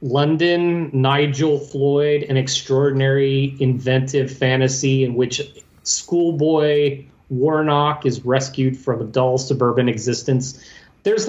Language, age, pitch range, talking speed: English, 30-49, 130-155 Hz, 100 wpm